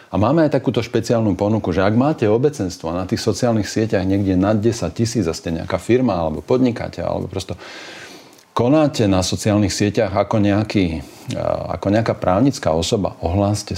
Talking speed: 160 wpm